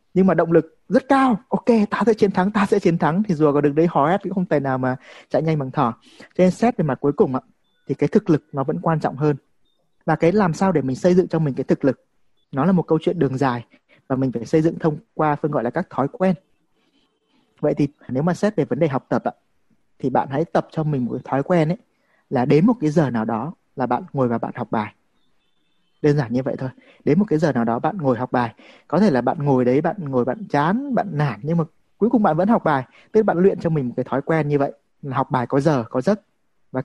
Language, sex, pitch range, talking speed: Vietnamese, male, 130-180 Hz, 275 wpm